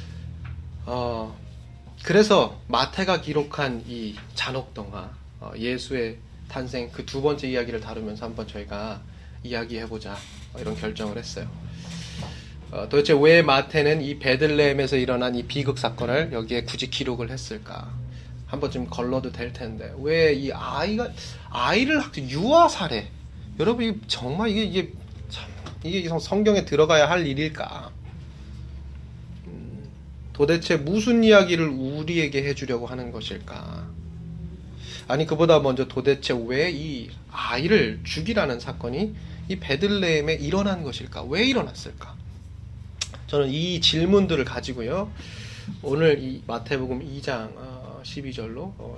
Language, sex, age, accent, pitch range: Korean, male, 20-39, native, 100-145 Hz